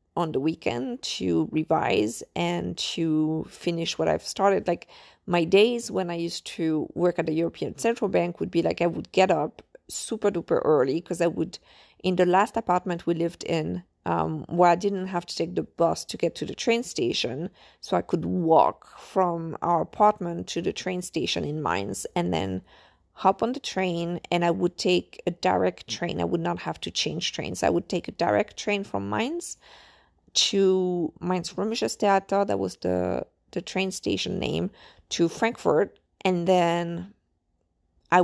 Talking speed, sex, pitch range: 180 wpm, female, 160-195 Hz